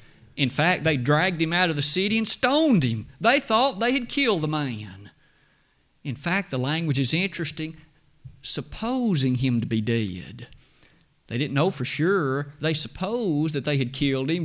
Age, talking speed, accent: 50-69, 175 wpm, American